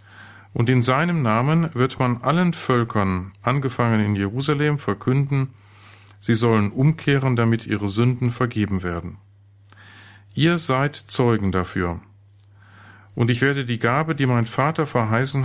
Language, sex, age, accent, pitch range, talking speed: German, male, 40-59, German, 100-130 Hz, 130 wpm